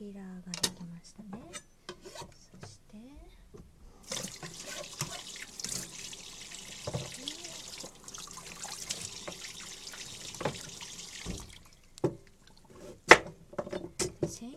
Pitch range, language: 180-255 Hz, Japanese